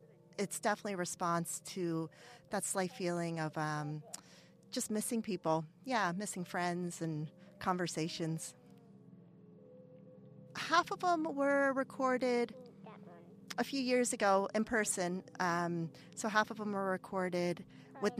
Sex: female